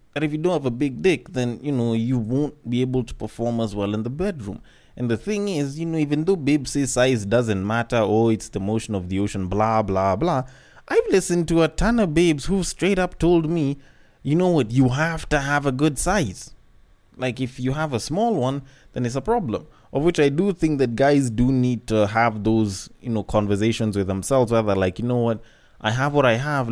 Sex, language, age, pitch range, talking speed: male, English, 20-39, 105-140 Hz, 235 wpm